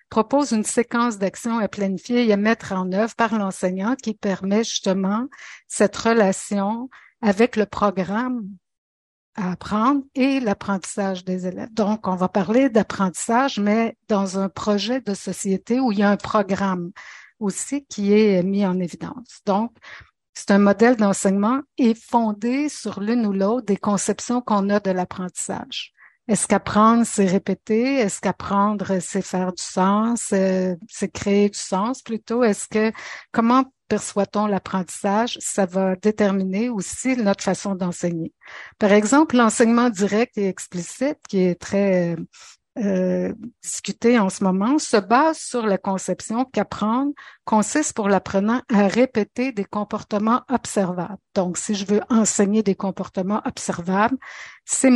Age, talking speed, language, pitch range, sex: 60-79, 145 wpm, French, 195-235 Hz, female